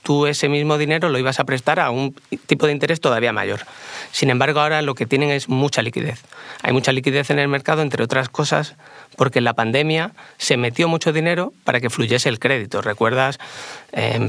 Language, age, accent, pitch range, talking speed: Spanish, 30-49, Spanish, 120-145 Hz, 200 wpm